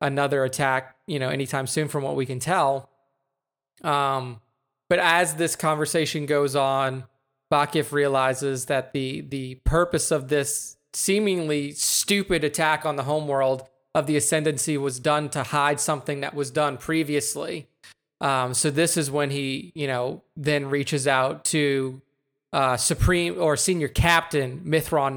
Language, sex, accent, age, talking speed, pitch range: English, male, American, 20-39, 150 wpm, 135-160 Hz